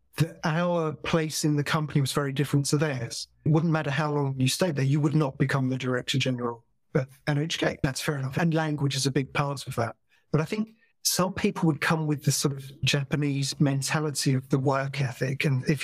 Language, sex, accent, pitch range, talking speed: English, male, British, 135-160 Hz, 220 wpm